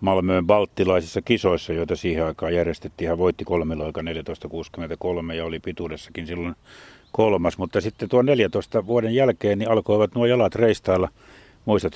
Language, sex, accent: Finnish, male, native